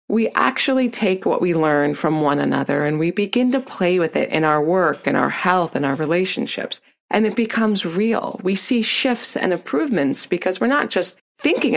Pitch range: 160-230 Hz